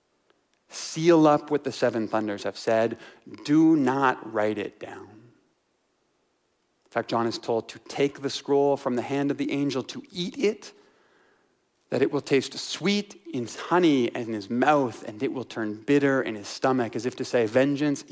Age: 30-49